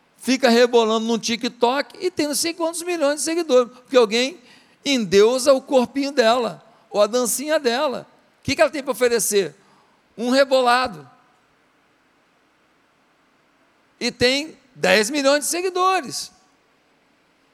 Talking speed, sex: 125 wpm, male